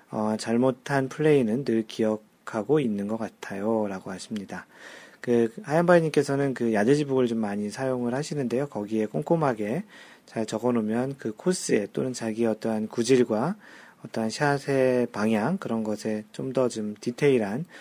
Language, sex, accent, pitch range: Korean, male, native, 110-140 Hz